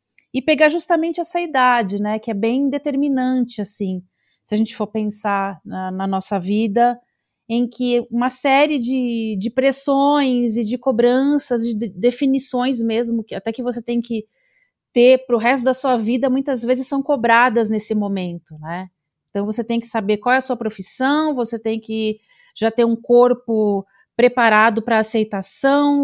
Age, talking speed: 30-49, 170 wpm